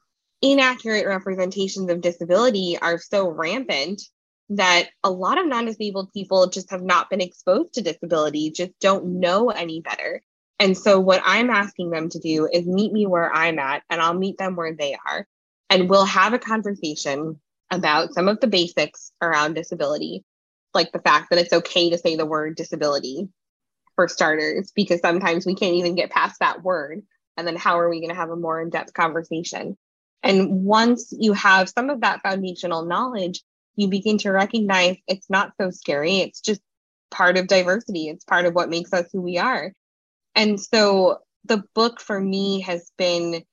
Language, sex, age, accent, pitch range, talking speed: English, female, 20-39, American, 170-200 Hz, 185 wpm